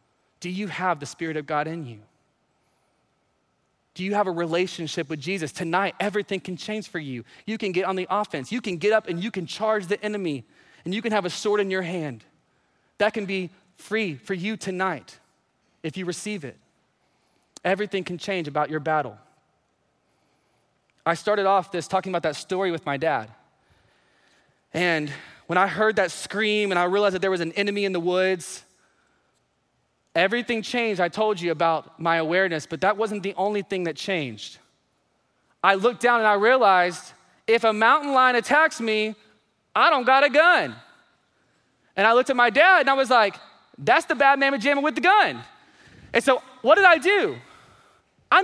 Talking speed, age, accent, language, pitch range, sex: 185 wpm, 20-39, American, English, 170-235 Hz, male